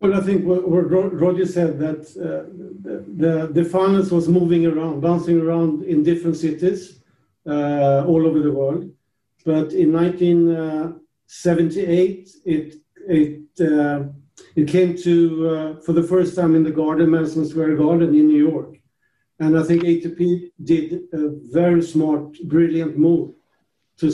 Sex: male